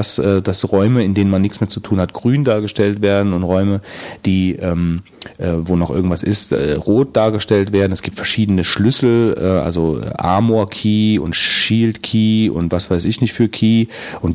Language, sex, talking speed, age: German, male, 185 wpm, 40-59